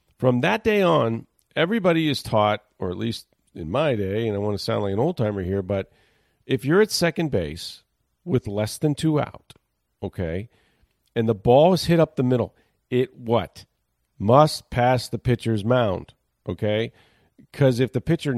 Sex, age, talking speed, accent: male, 40-59, 175 wpm, American